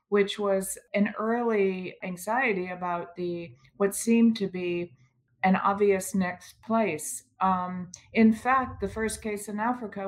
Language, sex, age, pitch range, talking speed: English, female, 40-59, 175-205 Hz, 135 wpm